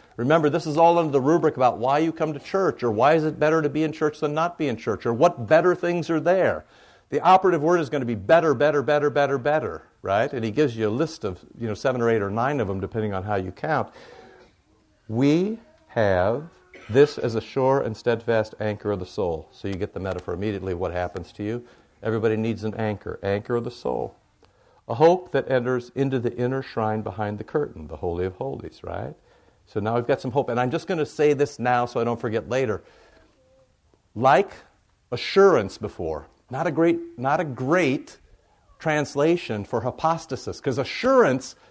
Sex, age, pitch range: male, 60-79, 115-160 Hz